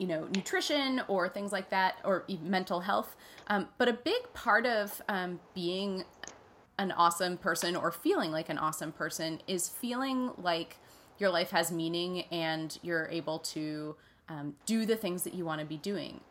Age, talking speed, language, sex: 20-39, 175 wpm, English, female